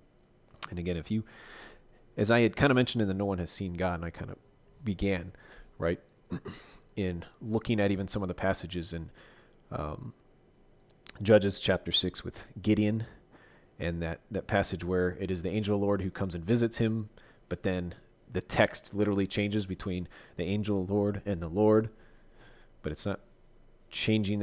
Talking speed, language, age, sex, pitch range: 180 wpm, English, 30-49, male, 90-105 Hz